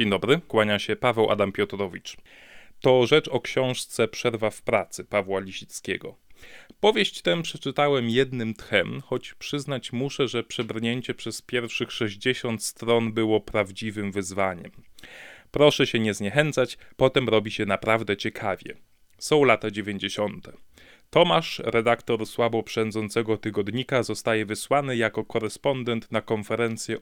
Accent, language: native, Polish